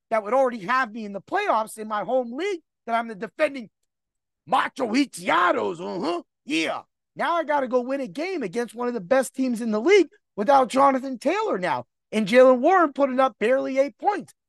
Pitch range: 185-275 Hz